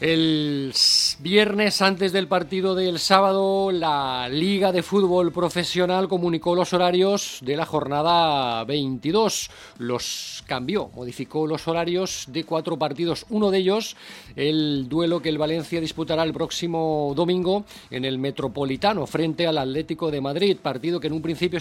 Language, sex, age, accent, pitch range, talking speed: Spanish, male, 40-59, Spanish, 140-175 Hz, 145 wpm